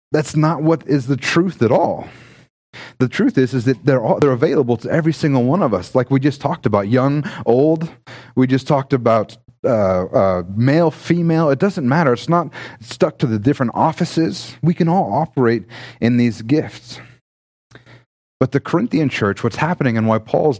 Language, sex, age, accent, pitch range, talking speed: English, male, 30-49, American, 115-150 Hz, 185 wpm